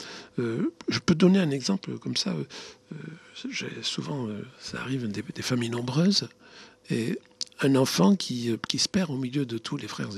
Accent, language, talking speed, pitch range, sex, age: French, French, 190 wpm, 115-165 Hz, male, 60-79